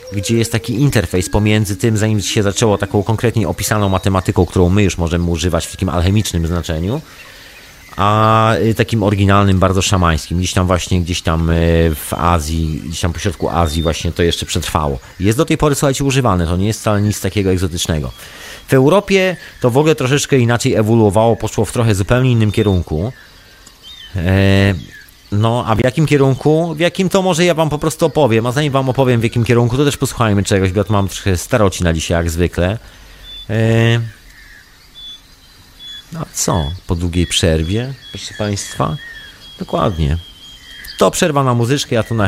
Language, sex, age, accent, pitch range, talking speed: Polish, male, 30-49, native, 90-115 Hz, 170 wpm